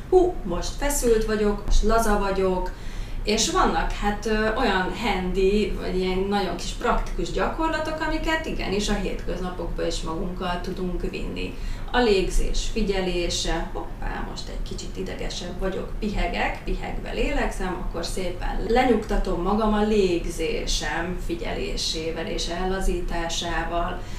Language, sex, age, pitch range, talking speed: Hungarian, female, 30-49, 180-225 Hz, 120 wpm